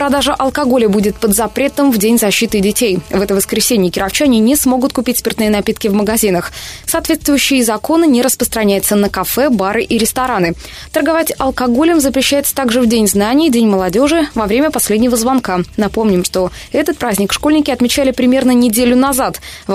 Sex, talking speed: female, 160 wpm